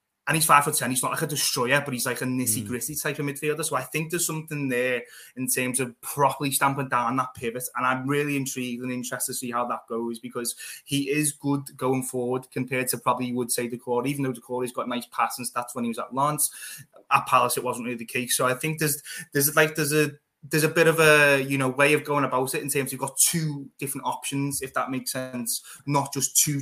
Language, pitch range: English, 120-140 Hz